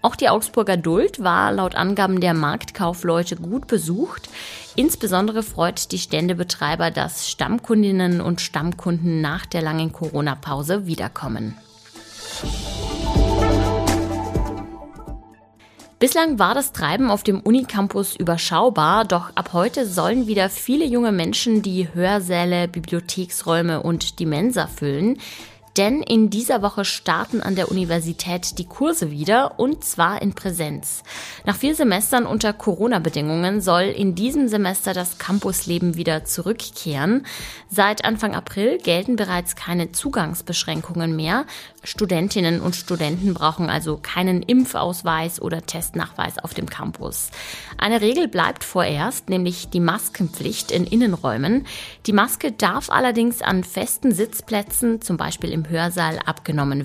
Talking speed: 120 wpm